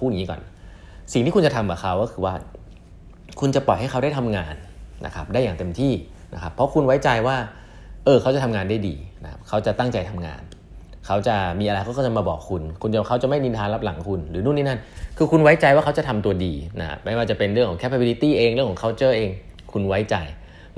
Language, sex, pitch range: Thai, male, 90-130 Hz